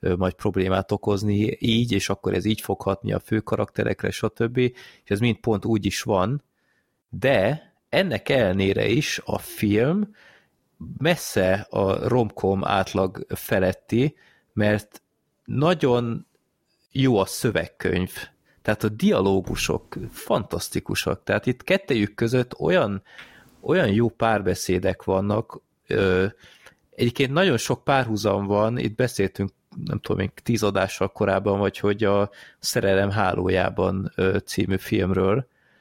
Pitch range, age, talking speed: 95-115 Hz, 30-49, 115 wpm